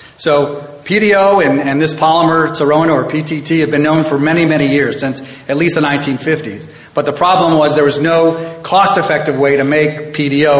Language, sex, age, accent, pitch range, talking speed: English, male, 40-59, American, 140-160 Hz, 185 wpm